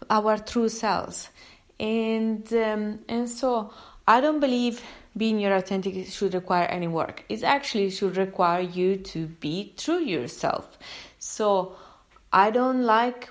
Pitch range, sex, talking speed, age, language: 180-225 Hz, female, 135 wpm, 20-39, English